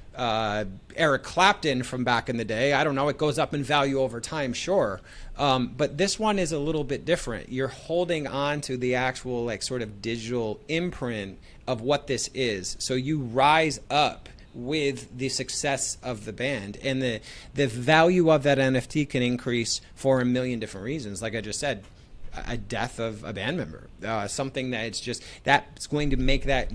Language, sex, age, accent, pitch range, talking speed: English, male, 30-49, American, 115-145 Hz, 195 wpm